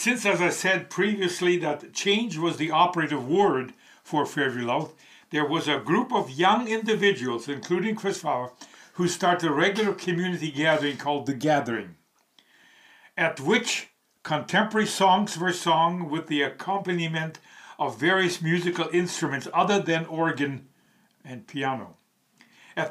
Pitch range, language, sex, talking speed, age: 150-195 Hz, English, male, 135 wpm, 60-79